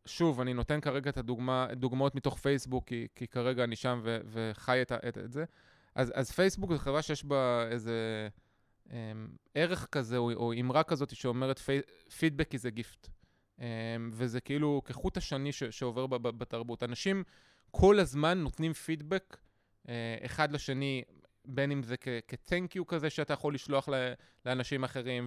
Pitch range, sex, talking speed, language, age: 125-160 Hz, male, 160 wpm, Hebrew, 20-39